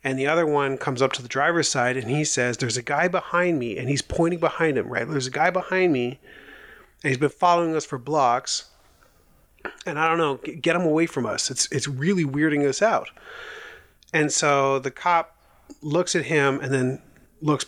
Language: English